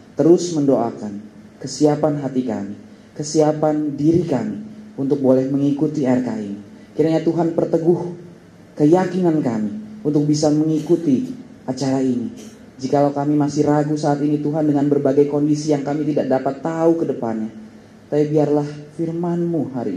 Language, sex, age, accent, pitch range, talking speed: Indonesian, male, 30-49, native, 110-145 Hz, 130 wpm